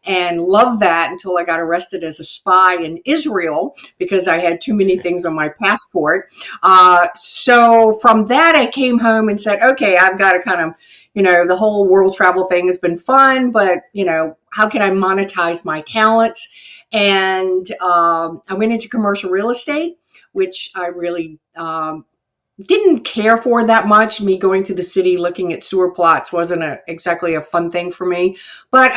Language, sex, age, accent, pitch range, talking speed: English, female, 50-69, American, 175-220 Hz, 185 wpm